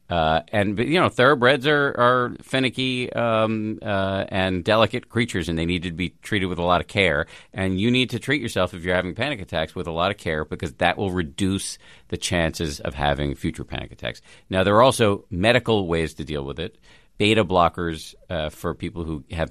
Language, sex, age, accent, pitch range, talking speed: English, male, 50-69, American, 80-105 Hz, 210 wpm